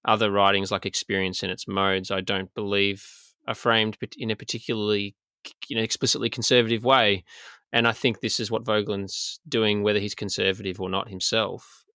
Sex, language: male, English